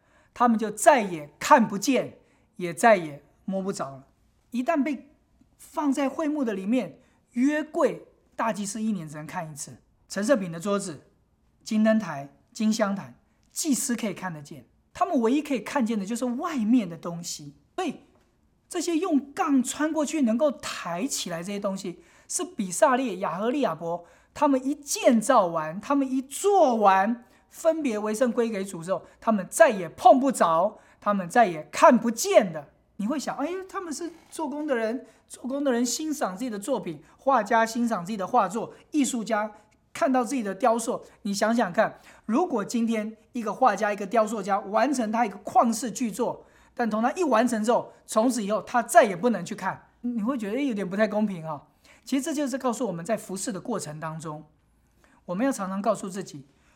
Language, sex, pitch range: English, male, 195-270 Hz